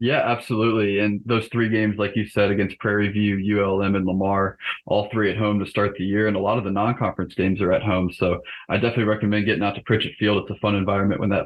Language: English